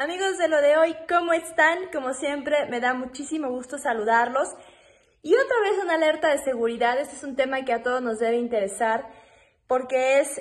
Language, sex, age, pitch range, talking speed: Spanish, female, 20-39, 225-290 Hz, 190 wpm